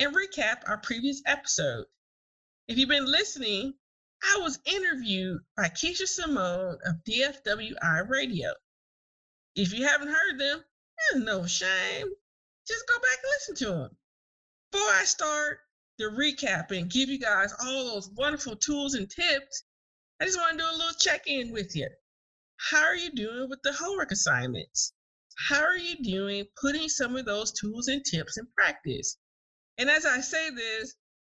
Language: English